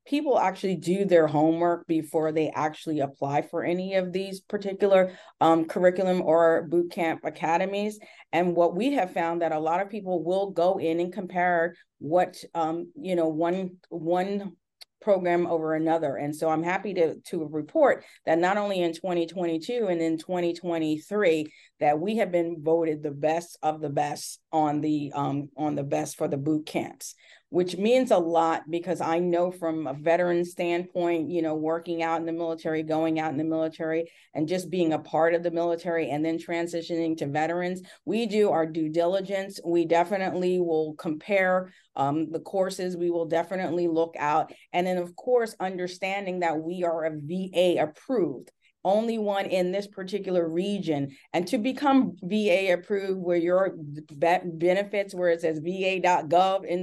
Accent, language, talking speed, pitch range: American, English, 170 wpm, 160-185 Hz